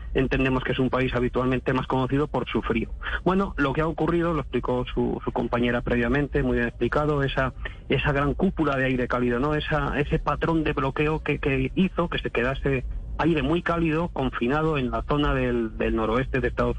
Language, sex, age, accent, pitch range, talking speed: Spanish, male, 30-49, Spanish, 125-160 Hz, 200 wpm